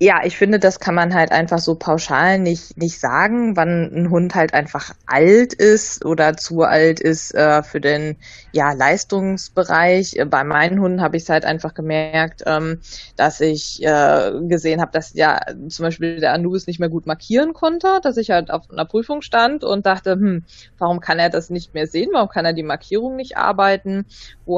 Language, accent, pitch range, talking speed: German, German, 155-180 Hz, 195 wpm